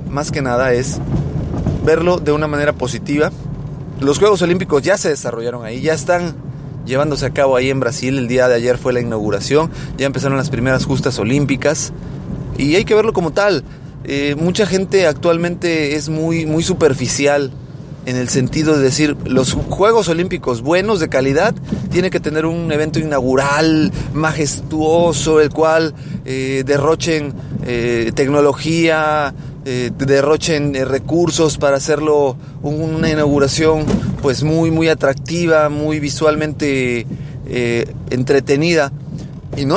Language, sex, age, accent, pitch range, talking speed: Spanish, male, 30-49, Mexican, 135-160 Hz, 140 wpm